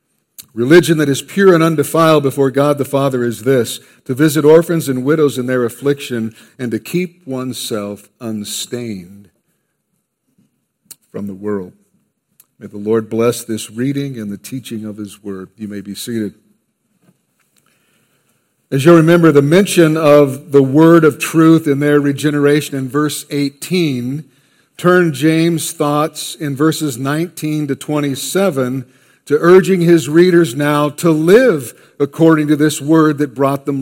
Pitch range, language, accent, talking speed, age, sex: 135-170 Hz, English, American, 145 wpm, 50-69, male